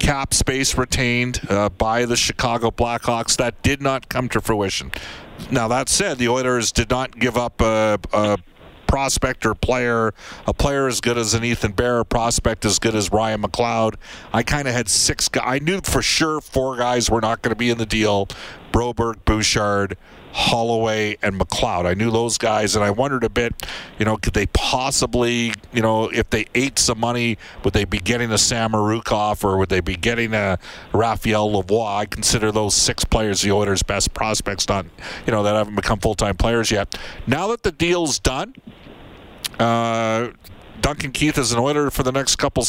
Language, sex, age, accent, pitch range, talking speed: English, male, 40-59, American, 105-125 Hz, 195 wpm